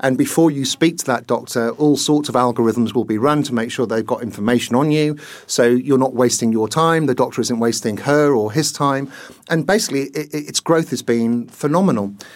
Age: 50-69